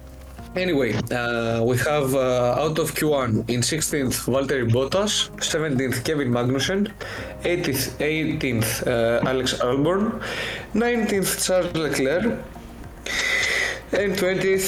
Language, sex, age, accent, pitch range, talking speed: Greek, male, 20-39, Spanish, 125-170 Hz, 100 wpm